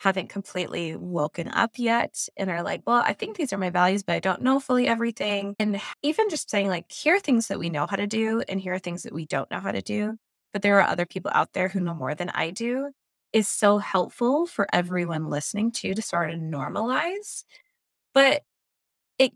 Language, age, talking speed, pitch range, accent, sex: English, 20-39, 225 wpm, 180-230 Hz, American, female